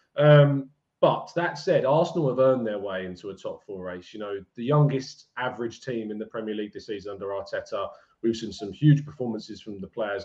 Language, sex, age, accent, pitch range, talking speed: English, male, 20-39, British, 115-140 Hz, 210 wpm